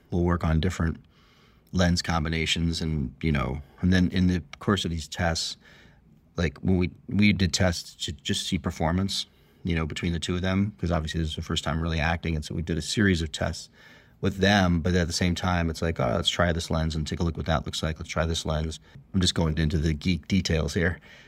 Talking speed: 235 wpm